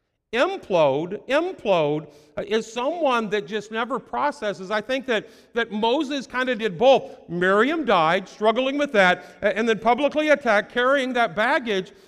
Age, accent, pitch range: 50-69, American, 180-235 Hz